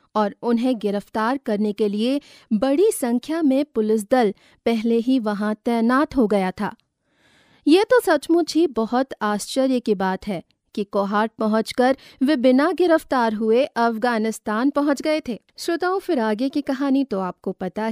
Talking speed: 150 wpm